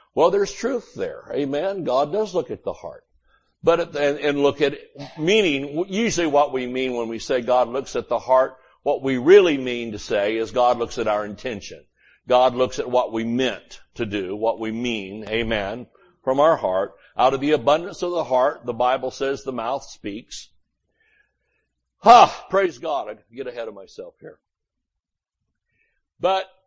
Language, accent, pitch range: English, American, 125-180 Hz